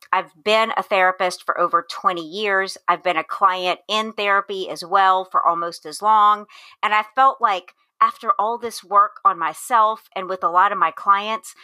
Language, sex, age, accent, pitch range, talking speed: English, female, 40-59, American, 190-250 Hz, 190 wpm